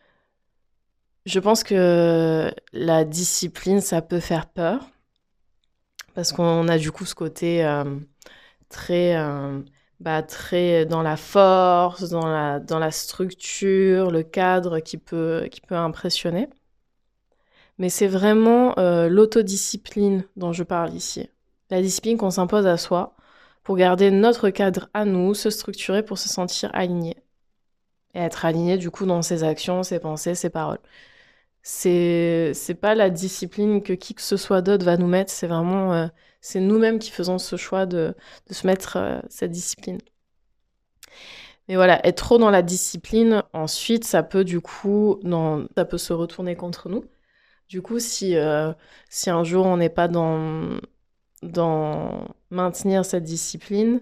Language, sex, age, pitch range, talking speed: French, female, 20-39, 170-195 Hz, 150 wpm